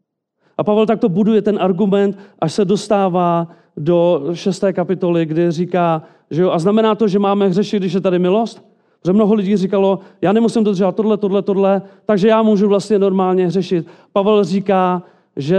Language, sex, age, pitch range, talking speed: Czech, male, 40-59, 160-205 Hz, 175 wpm